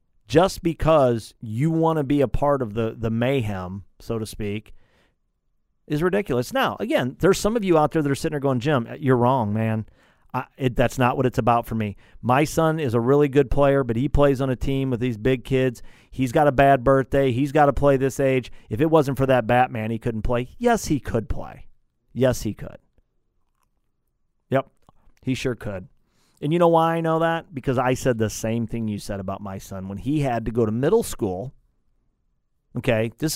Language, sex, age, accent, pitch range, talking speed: English, male, 40-59, American, 115-145 Hz, 215 wpm